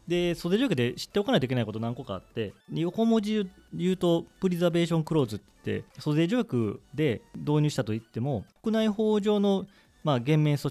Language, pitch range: Japanese, 110-165 Hz